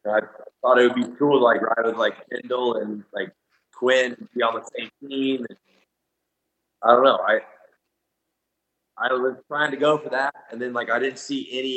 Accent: American